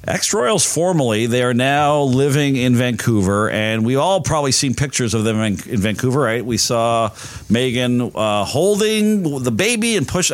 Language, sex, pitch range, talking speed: English, male, 110-140 Hz, 165 wpm